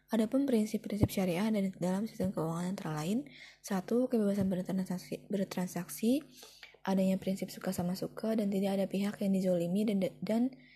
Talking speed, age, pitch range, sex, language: 140 wpm, 20-39, 180-210 Hz, female, Indonesian